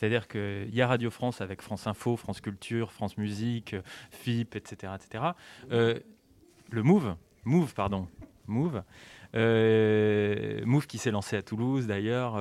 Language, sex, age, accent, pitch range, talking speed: French, male, 20-39, French, 105-130 Hz, 145 wpm